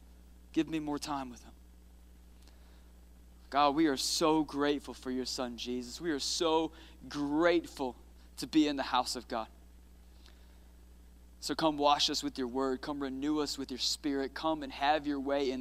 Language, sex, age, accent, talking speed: English, male, 20-39, American, 175 wpm